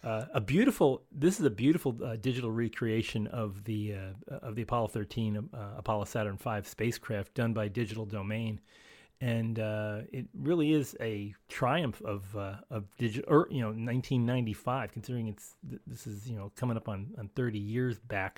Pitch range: 110-130 Hz